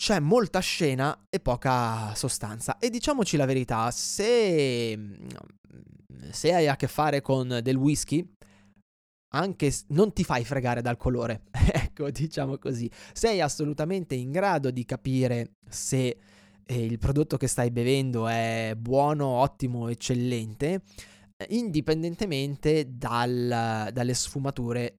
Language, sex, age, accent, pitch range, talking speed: Italian, male, 20-39, native, 110-150 Hz, 120 wpm